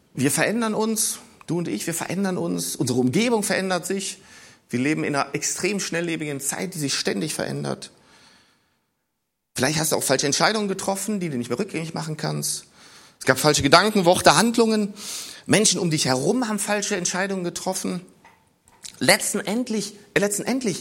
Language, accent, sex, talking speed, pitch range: German, German, male, 155 wpm, 150-205 Hz